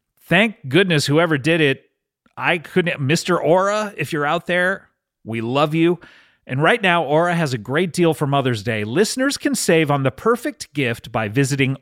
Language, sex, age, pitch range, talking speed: English, male, 40-59, 135-200 Hz, 185 wpm